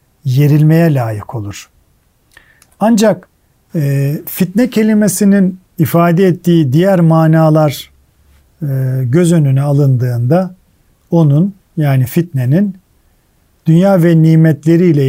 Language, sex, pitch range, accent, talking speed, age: Turkish, male, 135-170 Hz, native, 85 wpm, 50-69